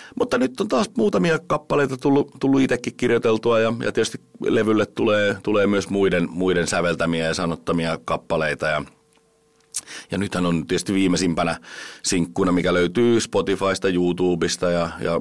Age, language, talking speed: 40-59, Finnish, 140 wpm